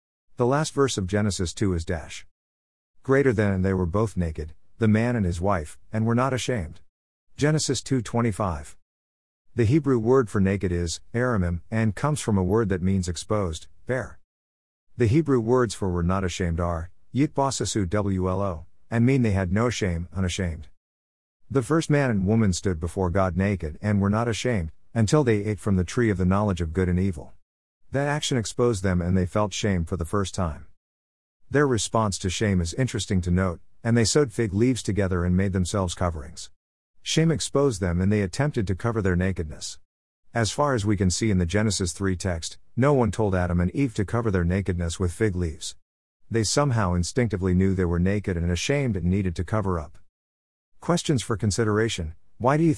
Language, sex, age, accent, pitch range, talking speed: English, male, 50-69, American, 90-115 Hz, 190 wpm